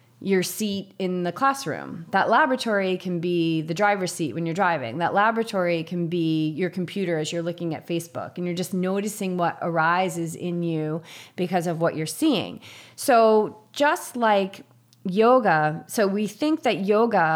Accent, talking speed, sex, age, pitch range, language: American, 165 wpm, female, 30-49, 165-205 Hz, English